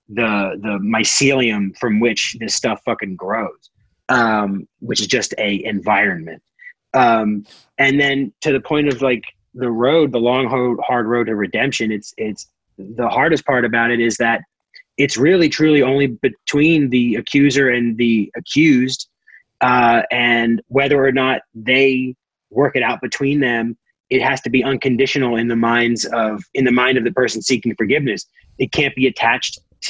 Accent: American